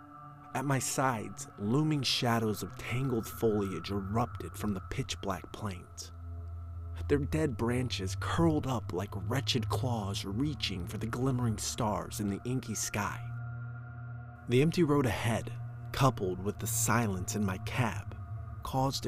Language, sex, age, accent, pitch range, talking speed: English, male, 30-49, American, 95-125 Hz, 130 wpm